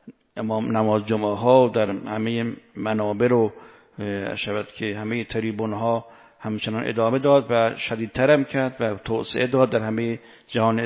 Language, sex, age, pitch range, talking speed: Persian, male, 50-69, 110-135 Hz, 140 wpm